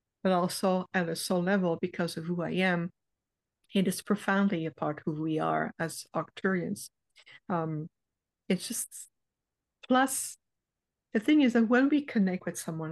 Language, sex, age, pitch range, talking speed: English, female, 60-79, 170-210 Hz, 160 wpm